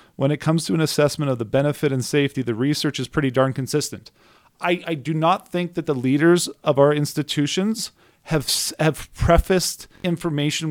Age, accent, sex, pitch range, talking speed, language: 40-59, American, male, 130-165 Hz, 180 wpm, English